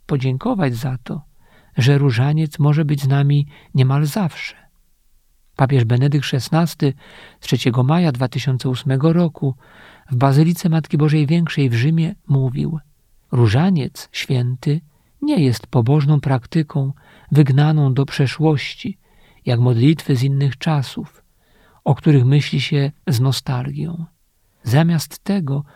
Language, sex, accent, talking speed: Polish, male, native, 115 wpm